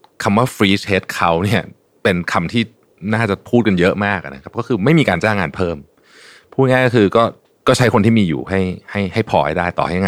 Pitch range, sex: 85-110 Hz, male